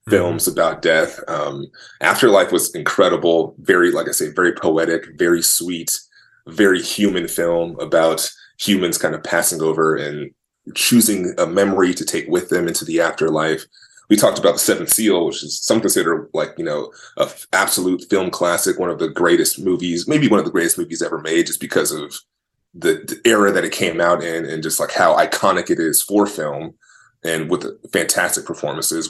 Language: English